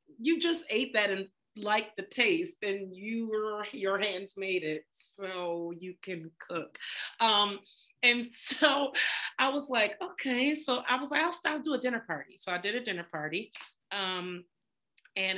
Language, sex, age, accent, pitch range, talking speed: English, female, 40-59, American, 185-250 Hz, 170 wpm